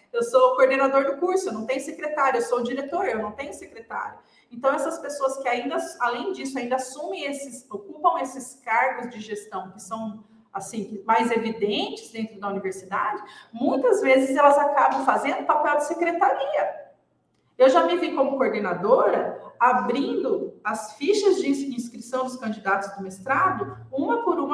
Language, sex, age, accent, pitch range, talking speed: Portuguese, female, 40-59, Brazilian, 220-320 Hz, 155 wpm